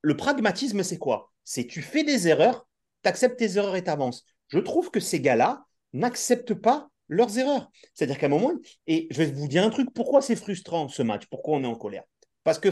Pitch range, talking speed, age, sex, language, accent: 145-215 Hz, 225 wpm, 30-49, male, French, French